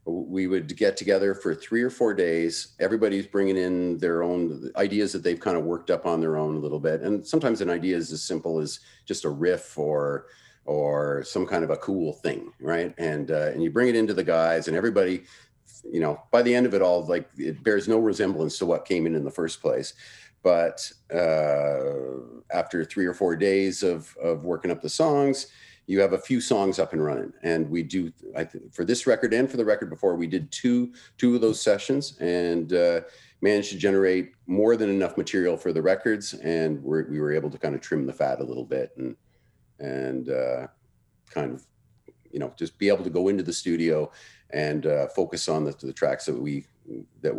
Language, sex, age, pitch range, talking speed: English, male, 40-59, 80-100 Hz, 215 wpm